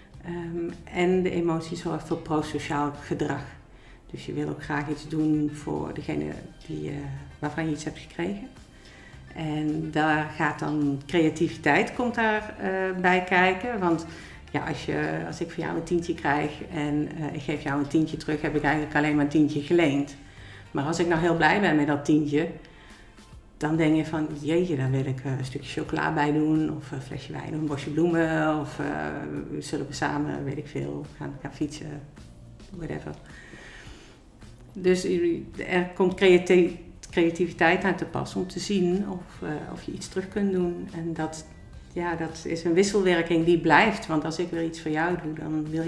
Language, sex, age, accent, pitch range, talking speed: Dutch, female, 50-69, Dutch, 145-170 Hz, 185 wpm